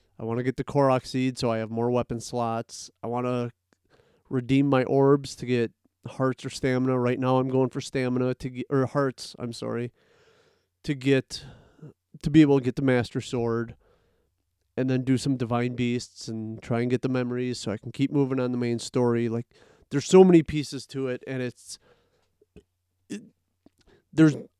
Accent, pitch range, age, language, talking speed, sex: American, 120-145 Hz, 30-49, English, 190 wpm, male